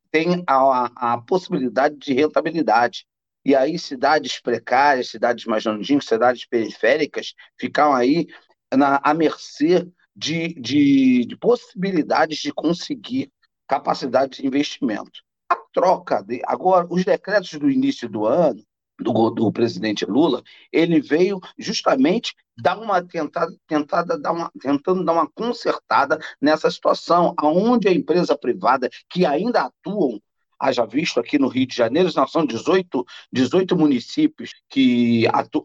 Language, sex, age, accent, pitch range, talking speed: Portuguese, male, 40-59, Brazilian, 140-190 Hz, 130 wpm